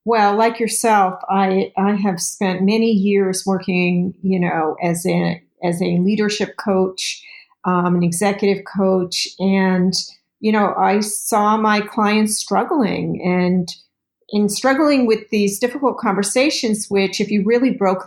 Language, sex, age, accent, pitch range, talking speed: English, female, 40-59, American, 185-215 Hz, 140 wpm